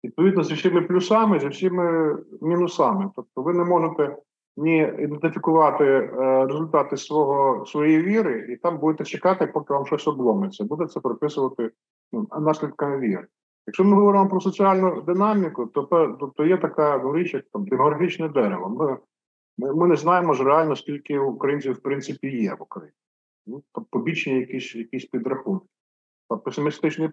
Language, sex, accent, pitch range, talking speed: Ukrainian, male, native, 125-175 Hz, 145 wpm